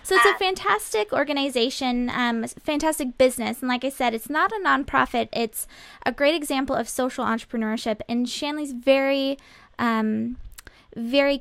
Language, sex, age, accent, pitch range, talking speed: English, female, 20-39, American, 220-275 Hz, 155 wpm